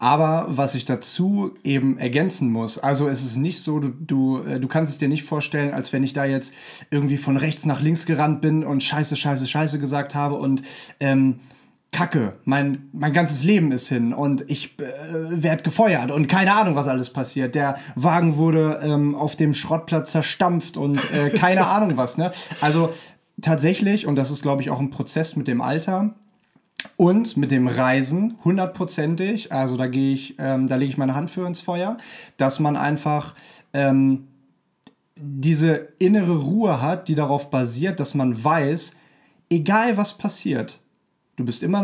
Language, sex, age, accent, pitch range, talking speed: German, male, 30-49, German, 135-170 Hz, 175 wpm